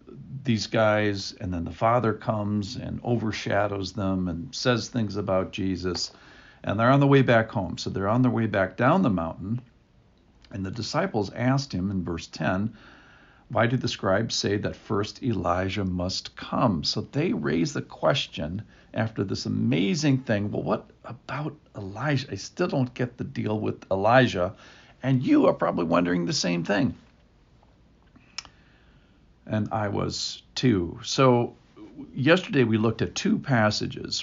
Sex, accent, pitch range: male, American, 95-125 Hz